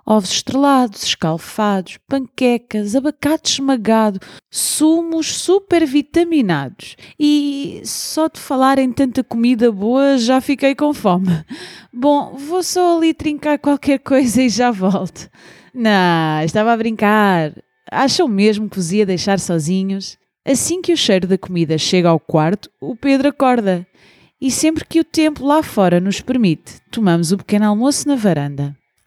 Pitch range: 200-290 Hz